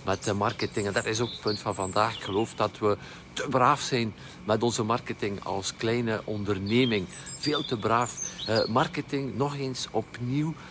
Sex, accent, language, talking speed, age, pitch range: male, Swiss, Dutch, 175 wpm, 50-69, 110-140 Hz